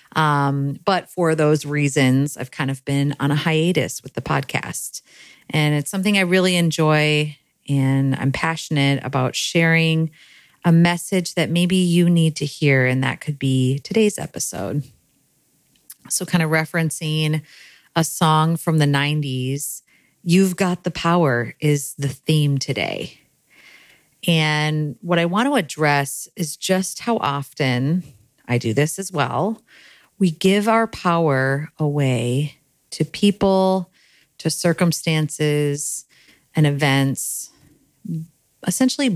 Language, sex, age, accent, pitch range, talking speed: English, female, 30-49, American, 135-170 Hz, 130 wpm